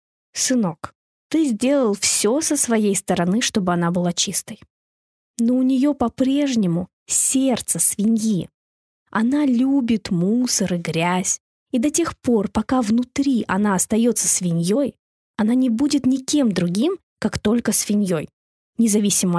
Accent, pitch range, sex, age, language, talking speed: native, 200-270 Hz, female, 20-39, Russian, 125 wpm